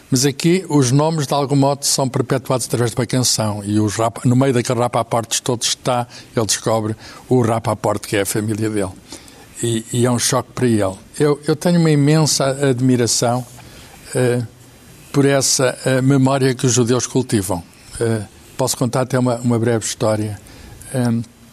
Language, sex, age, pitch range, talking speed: Portuguese, male, 60-79, 115-130 Hz, 175 wpm